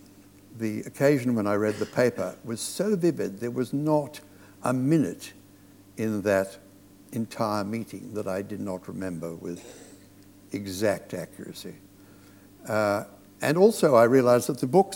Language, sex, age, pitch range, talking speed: English, male, 60-79, 100-125 Hz, 140 wpm